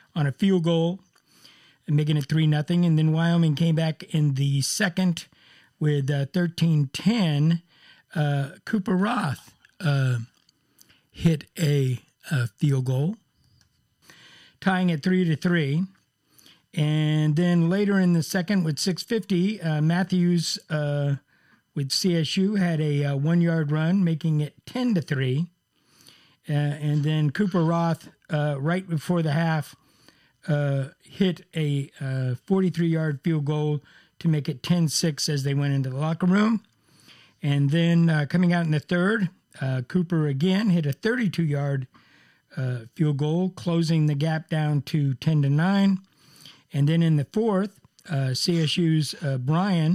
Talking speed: 135 wpm